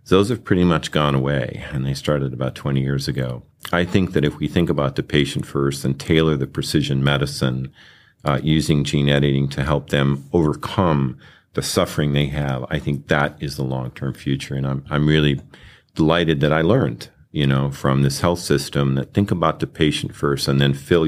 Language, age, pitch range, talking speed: English, 50-69, 70-80 Hz, 200 wpm